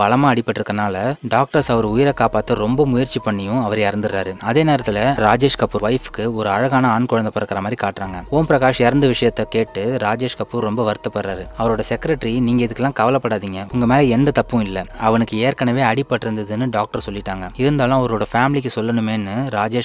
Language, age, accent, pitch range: Tamil, 20-39, native, 110-130 Hz